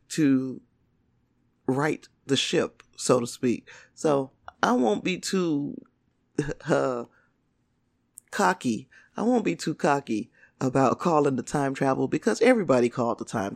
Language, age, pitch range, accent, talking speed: English, 40-59, 130-180 Hz, American, 130 wpm